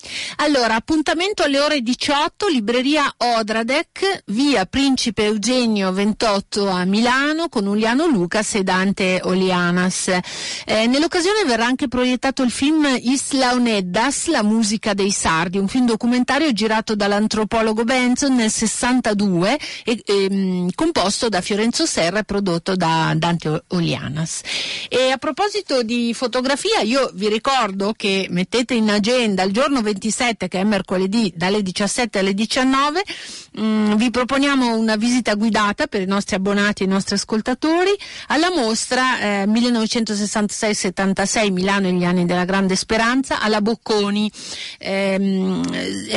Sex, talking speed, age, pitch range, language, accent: female, 130 wpm, 40-59, 185-245 Hz, Italian, native